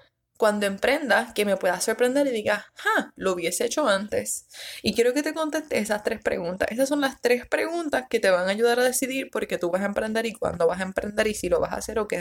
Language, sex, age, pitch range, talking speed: Spanish, female, 20-39, 185-245 Hz, 255 wpm